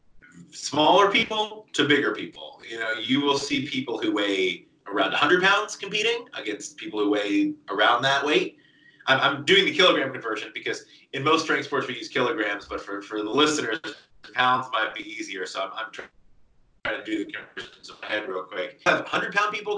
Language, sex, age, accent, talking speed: English, male, 30-49, American, 195 wpm